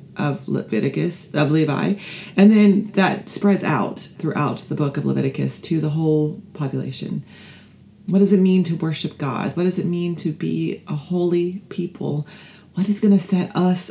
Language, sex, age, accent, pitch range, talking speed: English, female, 30-49, American, 155-200 Hz, 175 wpm